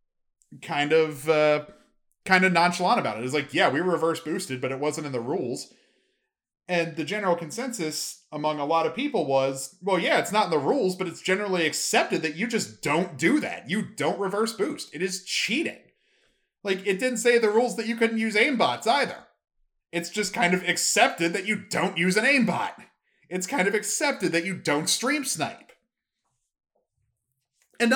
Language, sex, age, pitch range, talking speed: English, male, 30-49, 150-210 Hz, 190 wpm